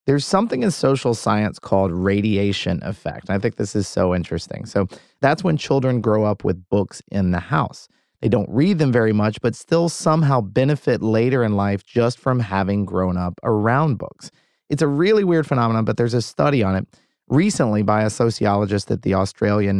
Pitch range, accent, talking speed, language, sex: 100-130 Hz, American, 190 wpm, English, male